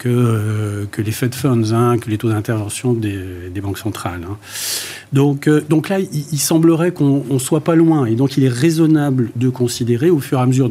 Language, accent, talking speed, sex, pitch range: French, French, 220 wpm, male, 110-135 Hz